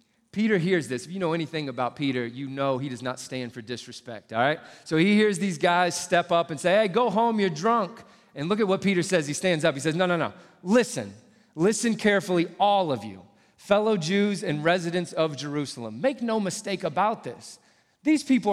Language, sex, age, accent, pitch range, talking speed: English, male, 30-49, American, 150-205 Hz, 215 wpm